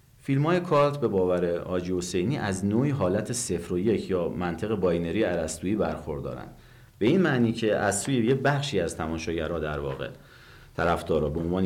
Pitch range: 85-125 Hz